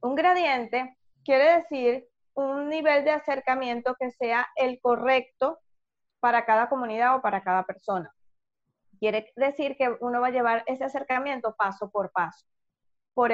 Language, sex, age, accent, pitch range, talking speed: Spanish, female, 20-39, American, 220-280 Hz, 145 wpm